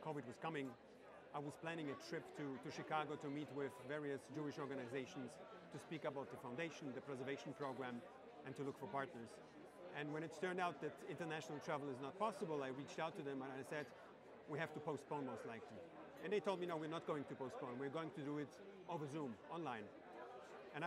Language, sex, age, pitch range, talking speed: English, male, 40-59, 140-160 Hz, 215 wpm